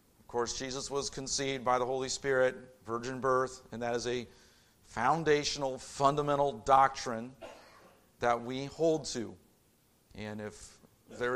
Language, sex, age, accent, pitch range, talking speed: English, male, 50-69, American, 130-170 Hz, 130 wpm